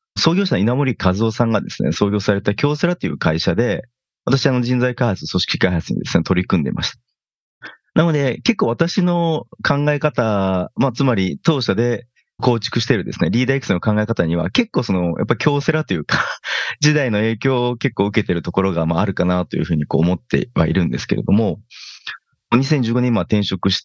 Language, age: Japanese, 30-49